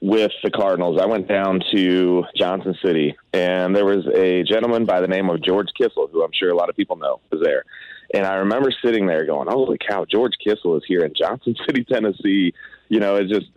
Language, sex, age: English, male, 30-49